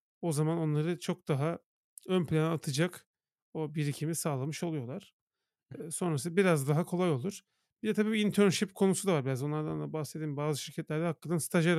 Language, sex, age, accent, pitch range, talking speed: Turkish, male, 40-59, native, 145-175 Hz, 170 wpm